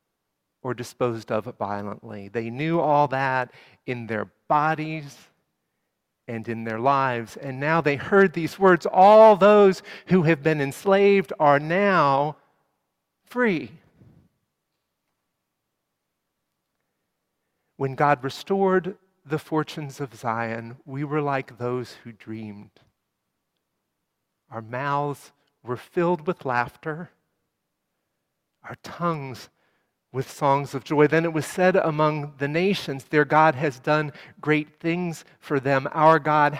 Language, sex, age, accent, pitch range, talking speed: English, male, 40-59, American, 135-170 Hz, 120 wpm